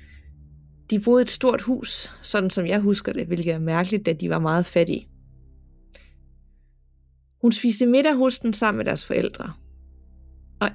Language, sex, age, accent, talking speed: Danish, female, 30-49, native, 155 wpm